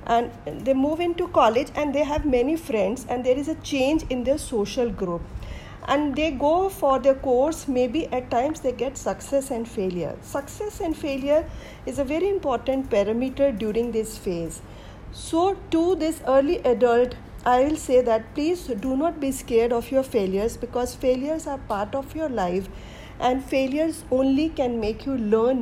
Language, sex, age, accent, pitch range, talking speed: English, female, 50-69, Indian, 225-295 Hz, 175 wpm